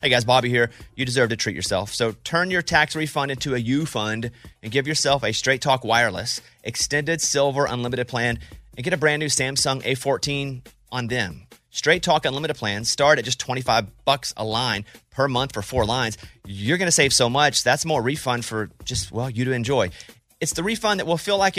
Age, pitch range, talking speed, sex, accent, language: 30-49, 120-165 Hz, 205 wpm, male, American, English